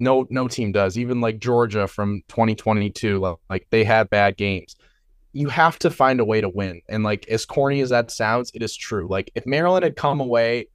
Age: 20-39